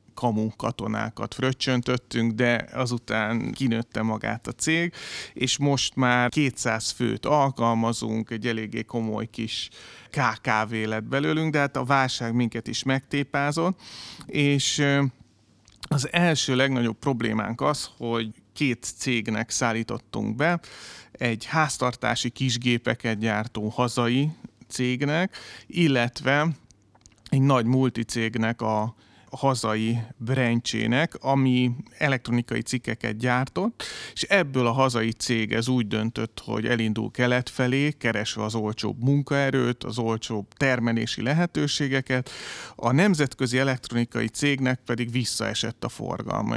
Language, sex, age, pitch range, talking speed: Hungarian, male, 30-49, 115-135 Hz, 110 wpm